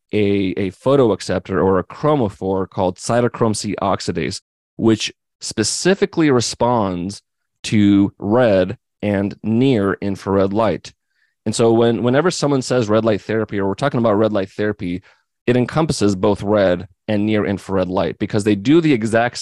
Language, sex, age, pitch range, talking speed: English, male, 30-49, 95-115 Hz, 150 wpm